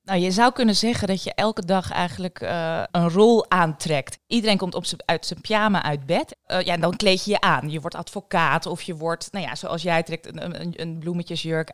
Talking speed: 220 wpm